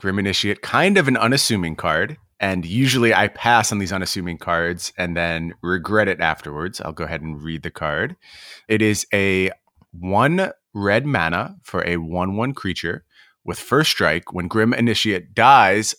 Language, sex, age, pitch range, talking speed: English, male, 30-49, 90-120 Hz, 175 wpm